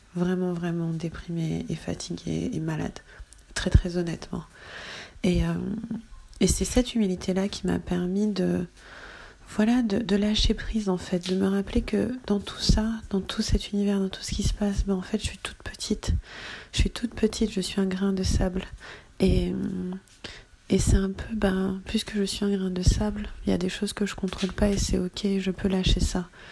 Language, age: French, 30-49